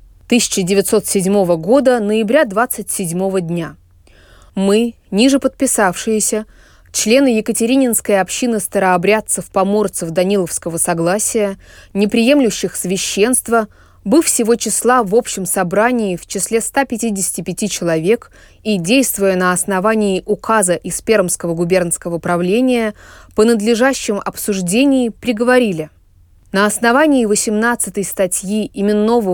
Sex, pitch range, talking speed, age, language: female, 185-235 Hz, 90 wpm, 20-39, Russian